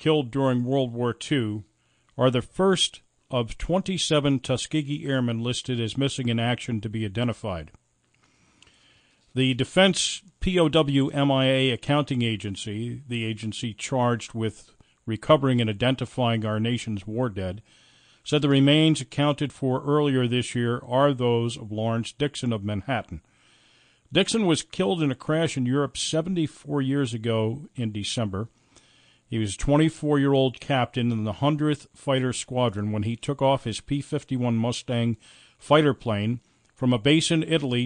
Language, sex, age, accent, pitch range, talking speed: English, male, 50-69, American, 115-140 Hz, 145 wpm